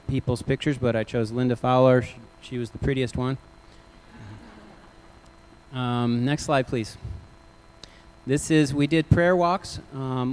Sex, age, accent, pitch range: male, 30-49, American, 110-135 Hz